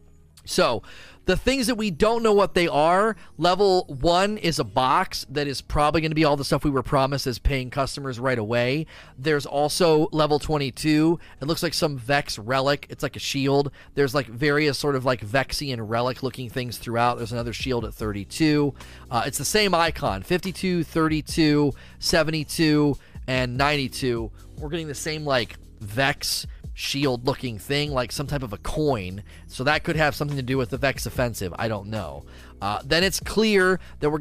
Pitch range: 125-155 Hz